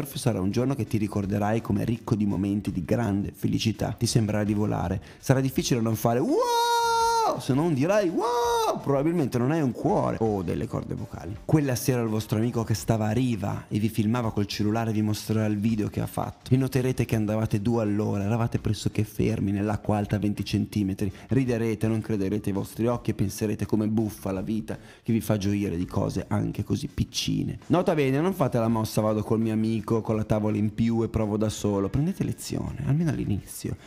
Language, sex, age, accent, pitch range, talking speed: Italian, male, 30-49, native, 105-135 Hz, 205 wpm